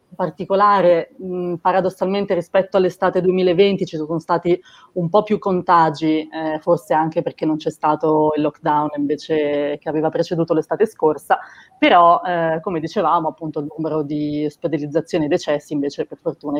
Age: 30-49